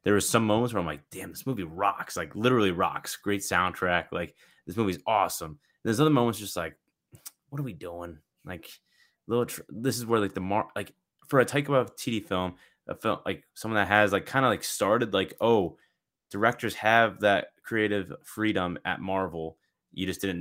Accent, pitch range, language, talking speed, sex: American, 95-120 Hz, English, 205 wpm, male